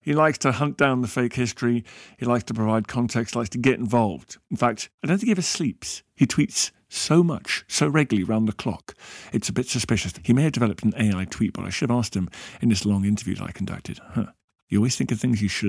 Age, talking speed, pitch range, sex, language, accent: 50-69, 255 wpm, 105-145 Hz, male, English, British